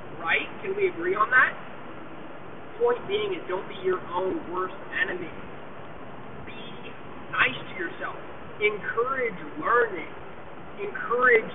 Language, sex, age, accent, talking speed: English, male, 20-39, American, 115 wpm